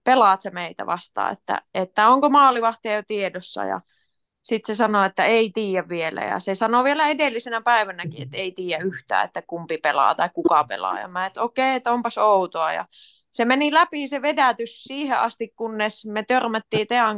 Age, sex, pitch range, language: 20-39, female, 195-240 Hz, Finnish